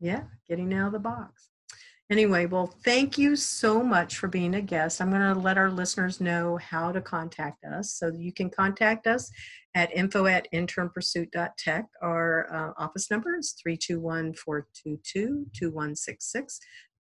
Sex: female